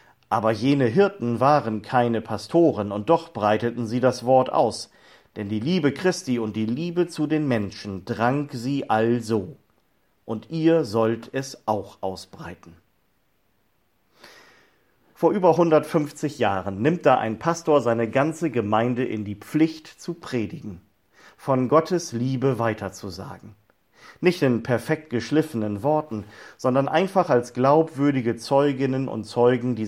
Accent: German